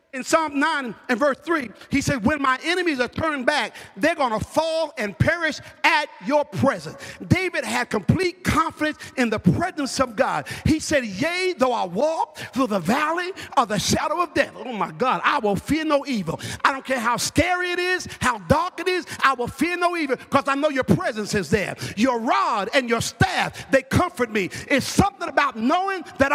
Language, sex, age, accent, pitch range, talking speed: English, male, 50-69, American, 245-335 Hz, 205 wpm